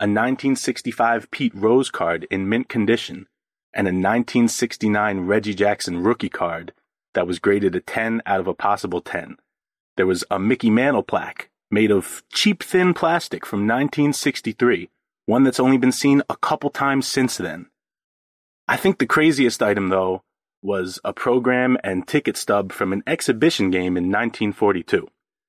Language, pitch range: English, 100-125 Hz